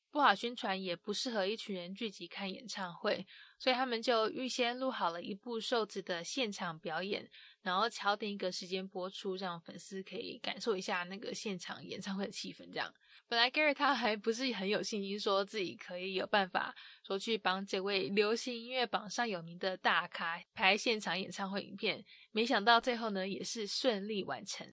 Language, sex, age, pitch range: English, female, 10-29, 195-240 Hz